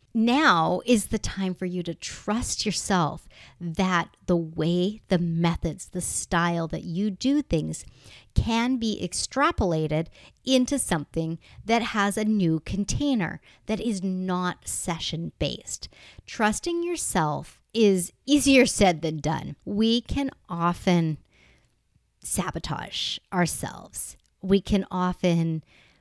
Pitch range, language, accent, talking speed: 170-220 Hz, English, American, 115 wpm